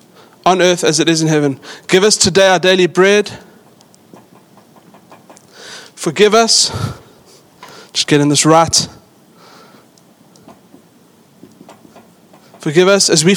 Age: 20-39